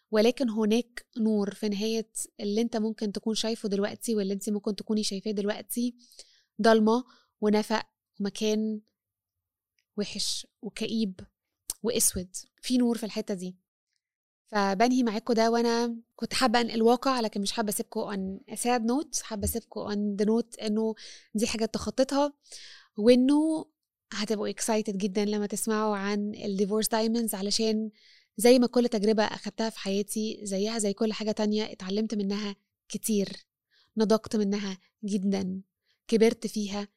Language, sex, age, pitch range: Arabic, female, 20-39, 200-230 Hz